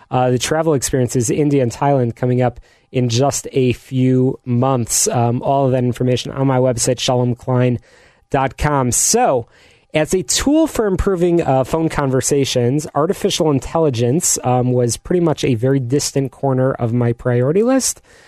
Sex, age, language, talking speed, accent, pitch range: male, 30-49, English, 150 wpm, American, 125-145 Hz